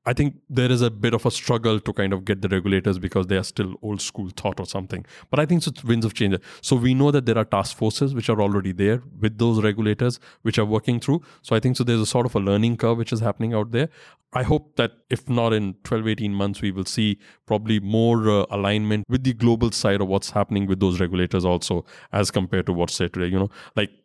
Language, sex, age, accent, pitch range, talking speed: English, male, 20-39, Indian, 95-120 Hz, 255 wpm